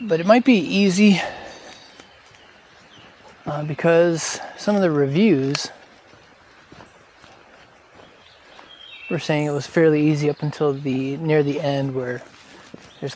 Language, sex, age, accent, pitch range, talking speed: English, male, 20-39, American, 140-175 Hz, 115 wpm